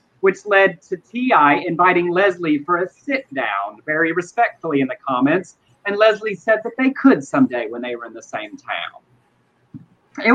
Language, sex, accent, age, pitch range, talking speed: English, male, American, 30-49, 140-200 Hz, 170 wpm